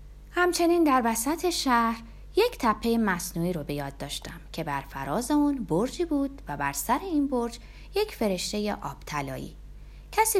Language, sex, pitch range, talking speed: Persian, female, 180-295 Hz, 150 wpm